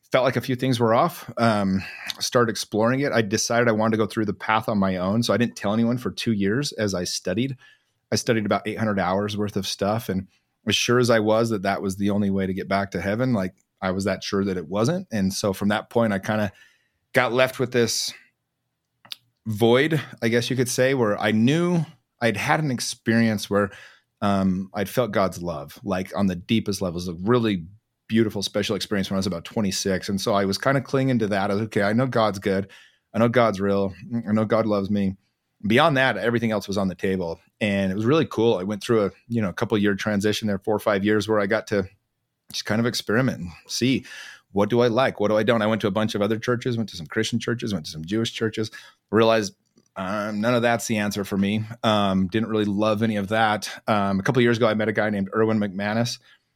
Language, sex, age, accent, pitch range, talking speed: English, male, 30-49, American, 100-115 Hz, 245 wpm